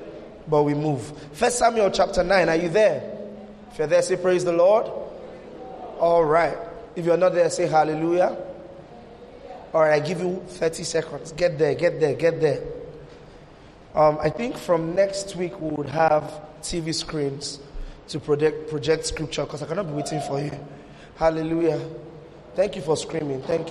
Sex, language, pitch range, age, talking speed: male, English, 155-195 Hz, 20-39, 165 wpm